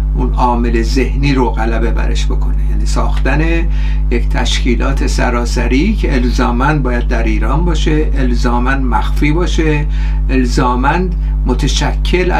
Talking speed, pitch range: 110 wpm, 125-155 Hz